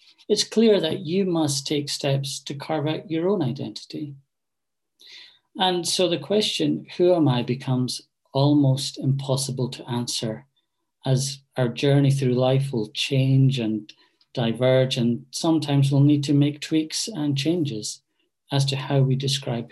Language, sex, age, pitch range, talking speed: English, male, 40-59, 130-155 Hz, 145 wpm